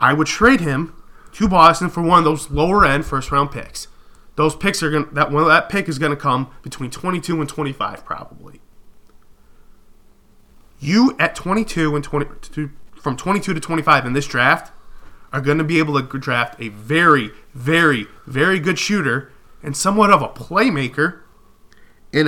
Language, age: English, 20-39